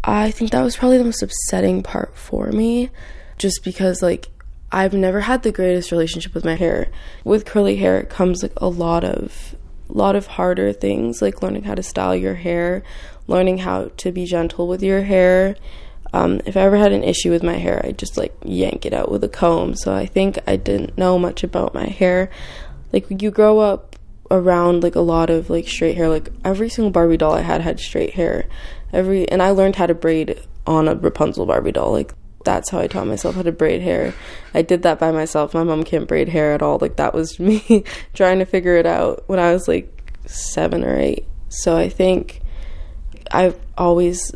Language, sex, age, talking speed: English, female, 20-39, 215 wpm